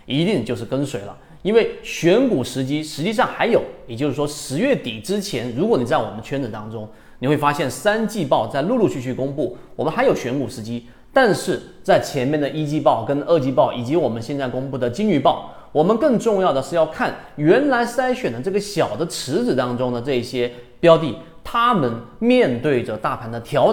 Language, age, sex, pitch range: Chinese, 30-49, male, 120-180 Hz